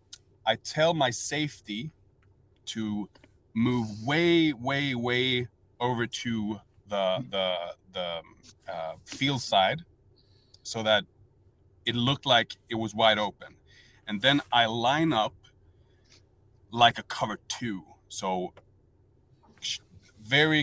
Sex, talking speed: male, 110 wpm